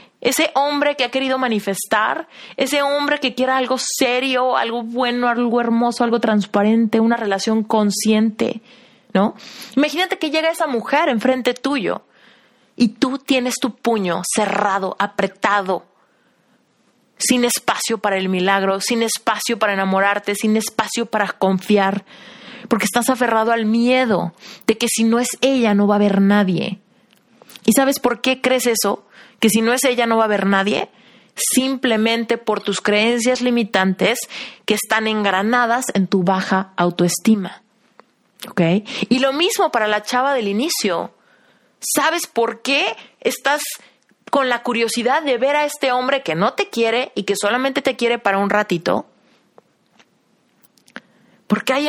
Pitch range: 210-260 Hz